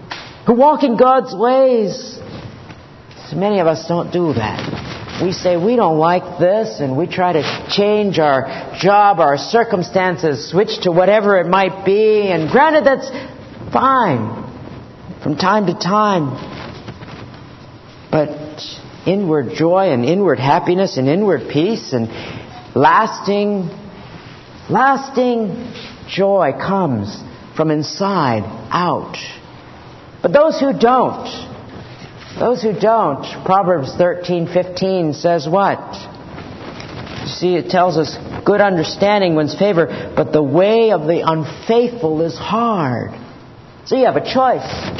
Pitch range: 150-225 Hz